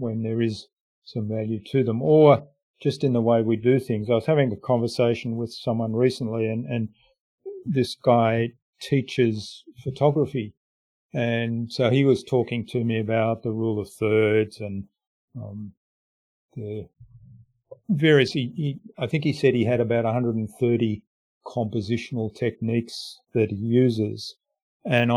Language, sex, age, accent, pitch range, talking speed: English, male, 50-69, Australian, 115-130 Hz, 140 wpm